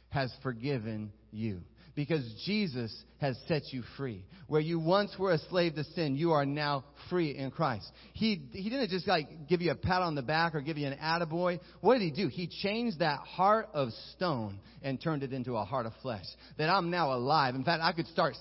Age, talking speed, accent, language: 30-49, 220 wpm, American, English